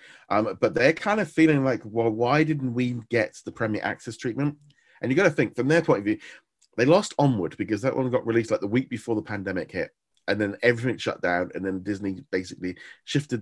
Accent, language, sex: British, English, male